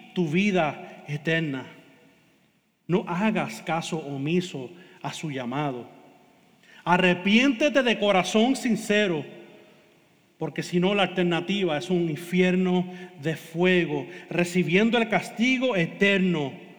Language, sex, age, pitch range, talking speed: Spanish, male, 40-59, 150-185 Hz, 100 wpm